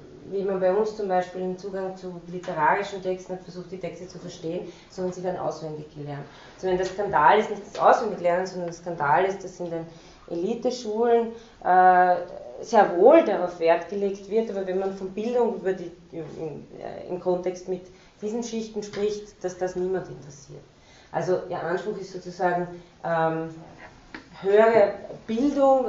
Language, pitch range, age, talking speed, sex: German, 175-205 Hz, 30-49, 160 wpm, female